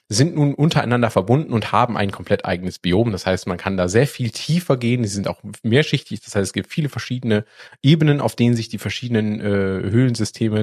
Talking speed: 210 wpm